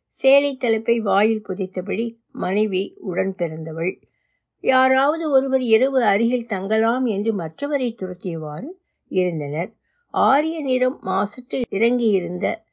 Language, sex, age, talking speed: Tamil, female, 60-79, 90 wpm